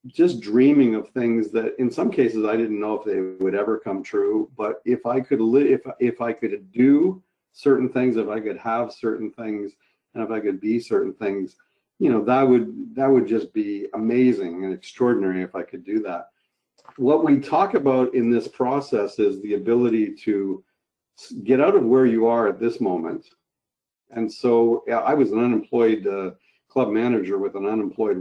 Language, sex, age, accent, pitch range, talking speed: English, male, 50-69, American, 105-130 Hz, 190 wpm